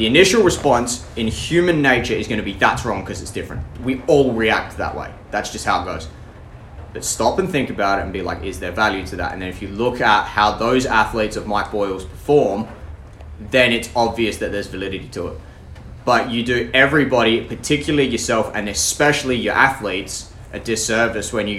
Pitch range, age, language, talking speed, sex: 95-115 Hz, 20-39, English, 205 wpm, male